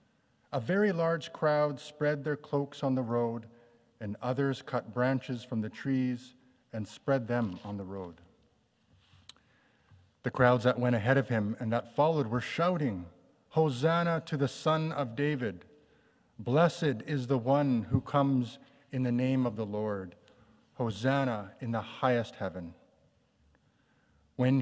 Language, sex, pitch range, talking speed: English, male, 105-135 Hz, 145 wpm